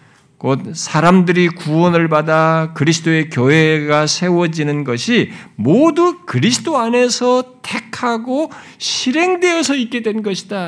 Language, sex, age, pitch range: Korean, male, 50-69, 155-235 Hz